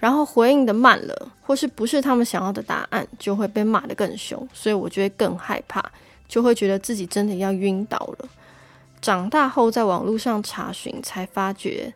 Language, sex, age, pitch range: Chinese, female, 20-39, 195-245 Hz